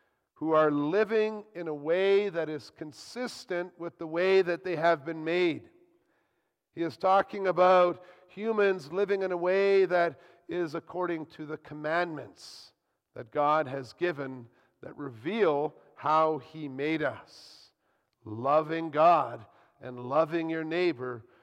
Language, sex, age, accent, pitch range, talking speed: English, male, 50-69, American, 145-180 Hz, 135 wpm